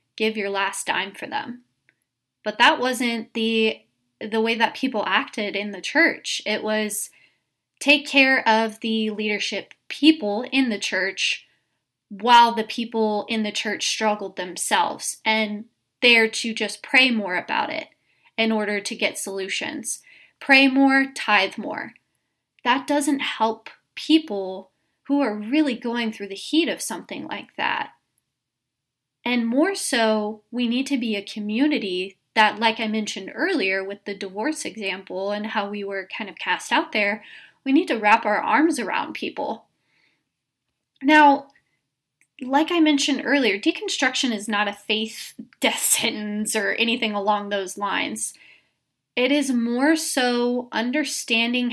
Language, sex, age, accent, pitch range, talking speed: English, female, 20-39, American, 205-260 Hz, 145 wpm